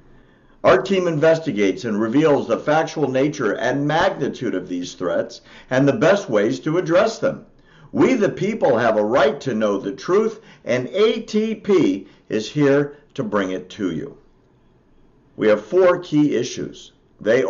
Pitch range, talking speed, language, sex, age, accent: 105-165 Hz, 155 wpm, English, male, 50-69, American